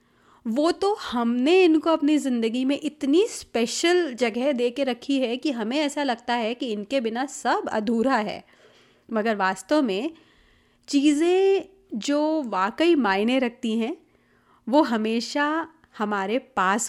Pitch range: 215-295 Hz